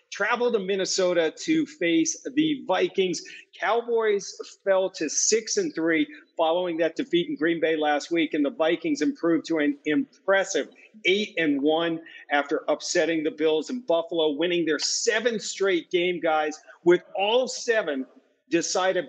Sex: male